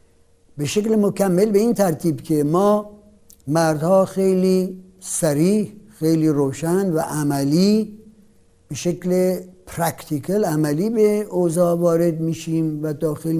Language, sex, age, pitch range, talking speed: Persian, male, 60-79, 155-205 Hz, 110 wpm